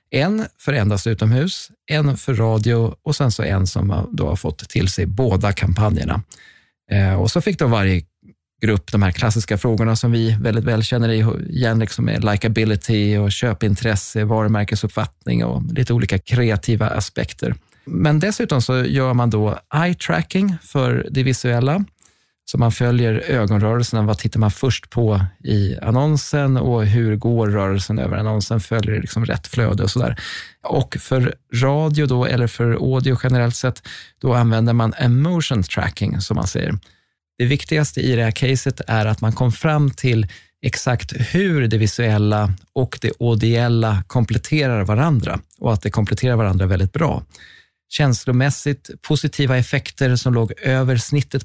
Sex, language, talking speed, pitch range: male, Swedish, 150 wpm, 105-130 Hz